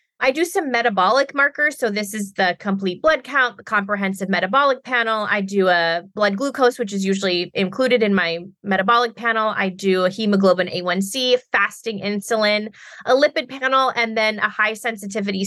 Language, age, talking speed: English, 20-39, 170 wpm